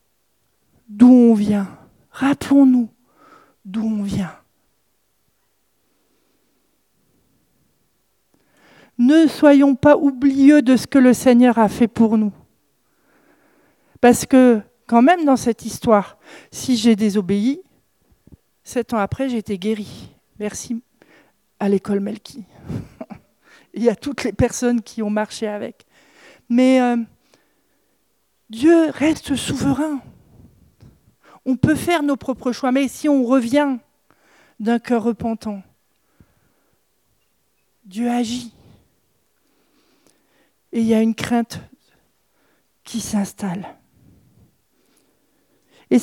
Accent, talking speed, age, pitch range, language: French, 105 wpm, 50-69, 220-280 Hz, French